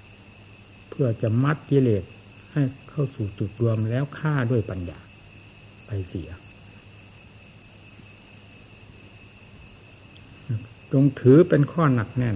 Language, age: Thai, 60-79